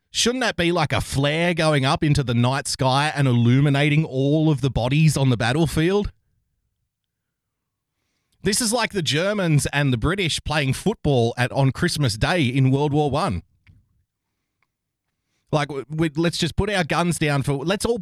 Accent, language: Australian, English